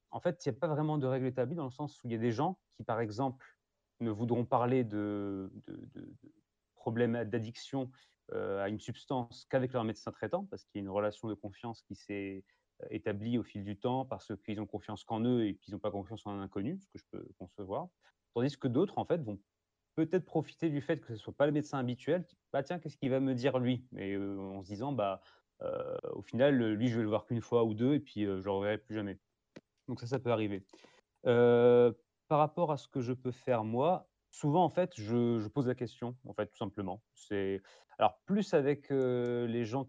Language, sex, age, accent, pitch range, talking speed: French, male, 30-49, French, 105-140 Hz, 245 wpm